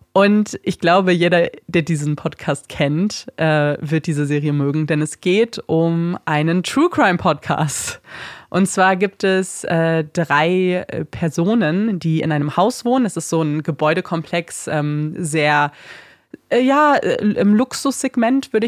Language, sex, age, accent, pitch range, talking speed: German, female, 20-39, German, 155-195 Hz, 125 wpm